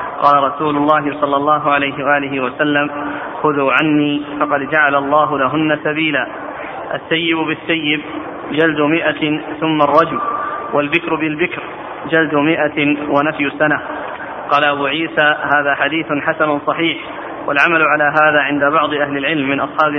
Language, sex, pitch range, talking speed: Arabic, male, 145-160 Hz, 130 wpm